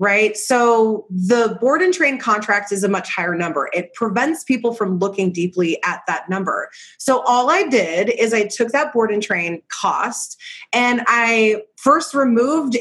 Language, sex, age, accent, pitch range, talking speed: English, female, 30-49, American, 195-245 Hz, 175 wpm